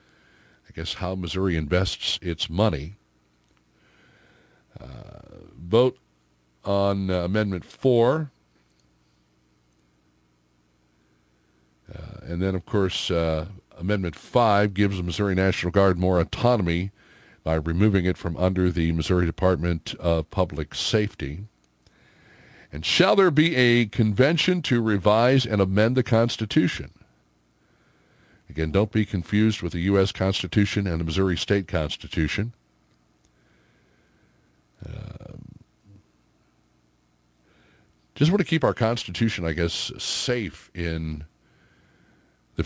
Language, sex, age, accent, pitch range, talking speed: English, male, 60-79, American, 70-105 Hz, 105 wpm